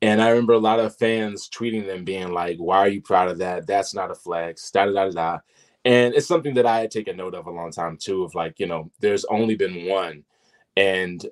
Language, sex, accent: English, male, American